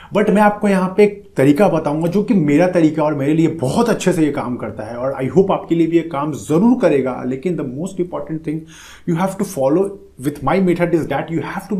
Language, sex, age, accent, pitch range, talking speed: Hindi, male, 30-49, native, 135-180 Hz, 250 wpm